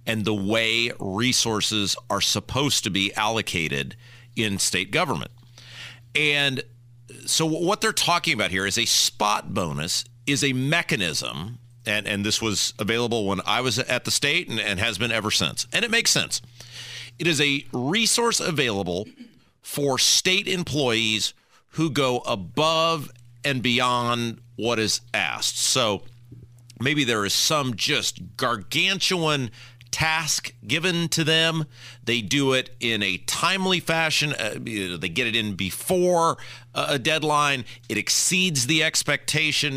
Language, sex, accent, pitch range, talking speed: English, male, American, 115-150 Hz, 145 wpm